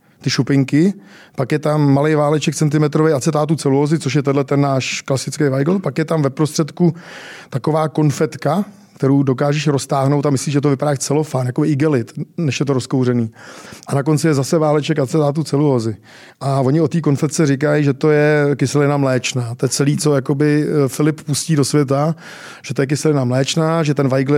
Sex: male